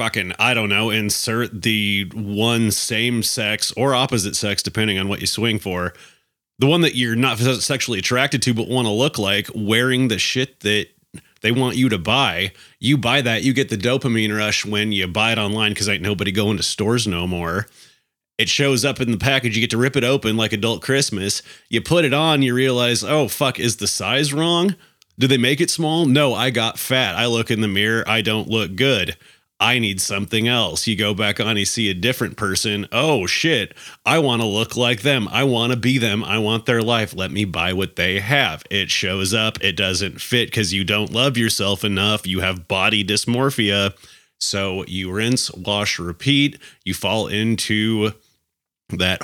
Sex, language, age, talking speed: male, English, 30-49, 200 wpm